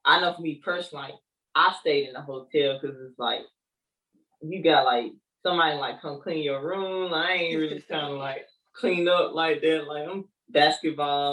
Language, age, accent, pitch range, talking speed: English, 10-29, American, 145-195 Hz, 195 wpm